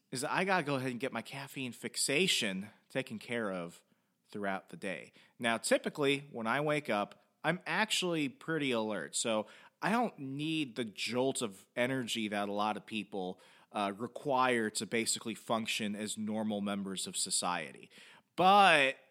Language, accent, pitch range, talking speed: English, American, 105-135 Hz, 165 wpm